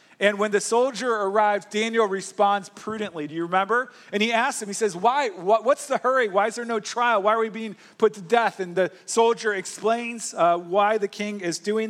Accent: American